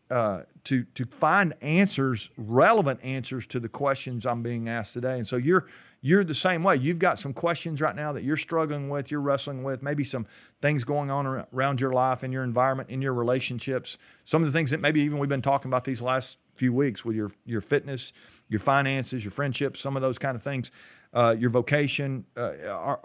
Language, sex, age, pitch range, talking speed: English, male, 40-59, 125-160 Hz, 215 wpm